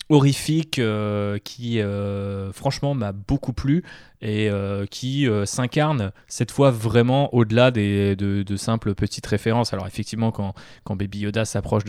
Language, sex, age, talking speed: French, male, 20-39, 150 wpm